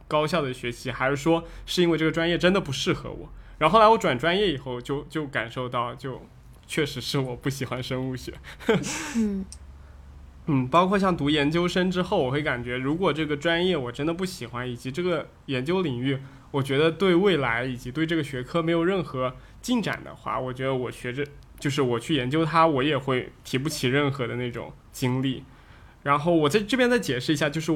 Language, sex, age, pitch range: Chinese, male, 20-39, 125-165 Hz